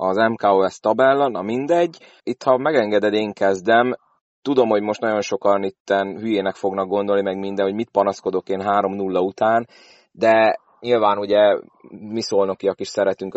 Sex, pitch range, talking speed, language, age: male, 95-110 Hz, 150 wpm, Hungarian, 30-49